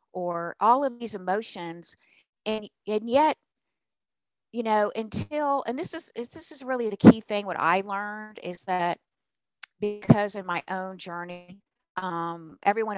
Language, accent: English, American